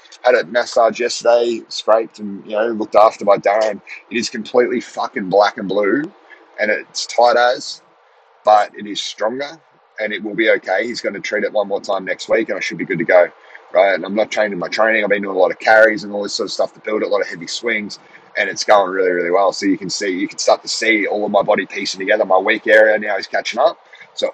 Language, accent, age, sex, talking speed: English, Australian, 30-49, male, 260 wpm